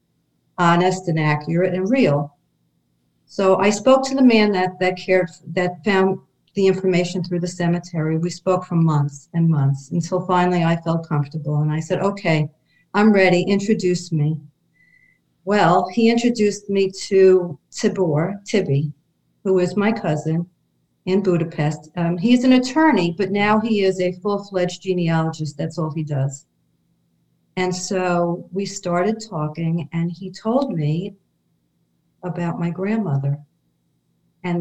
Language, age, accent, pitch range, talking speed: English, 50-69, American, 165-190 Hz, 140 wpm